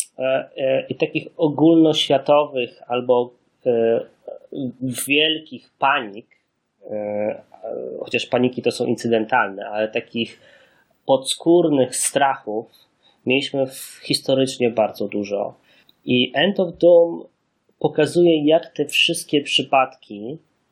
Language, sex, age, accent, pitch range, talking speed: English, male, 20-39, Polish, 120-155 Hz, 80 wpm